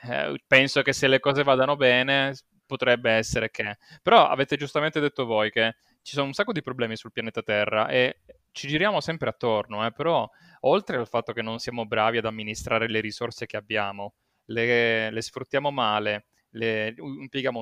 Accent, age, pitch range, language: native, 20-39, 110-135 Hz, Italian